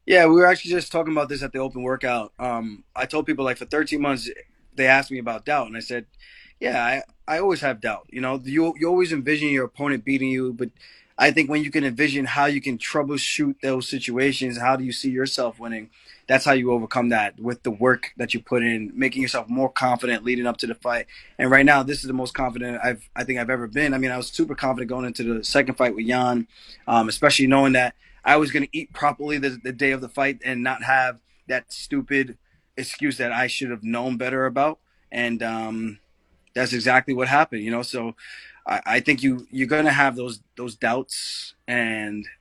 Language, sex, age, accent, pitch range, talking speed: English, male, 20-39, American, 120-140 Hz, 225 wpm